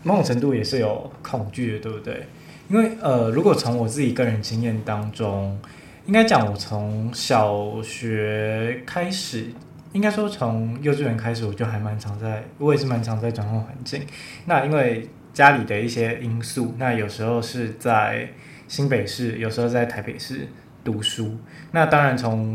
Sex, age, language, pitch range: male, 20-39, Chinese, 110-145 Hz